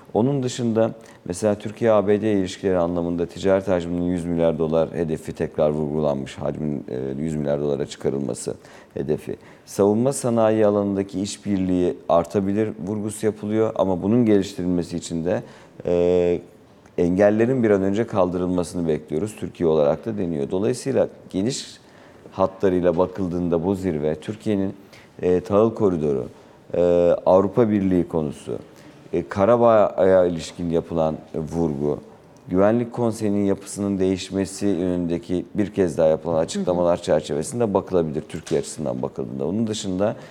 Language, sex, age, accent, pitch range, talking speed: Turkish, male, 50-69, native, 85-105 Hz, 115 wpm